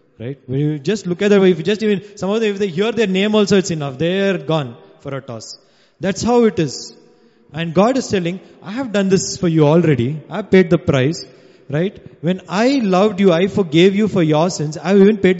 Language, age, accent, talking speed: English, 20-39, Indian, 235 wpm